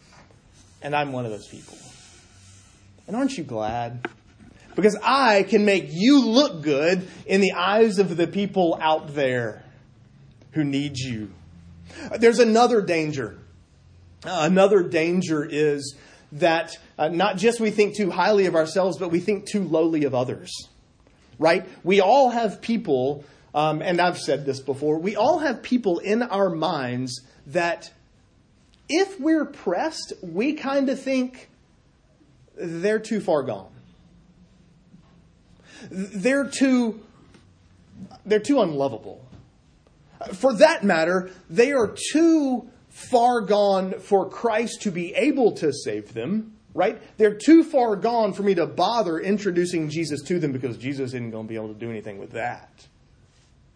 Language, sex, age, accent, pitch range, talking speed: English, male, 30-49, American, 135-215 Hz, 145 wpm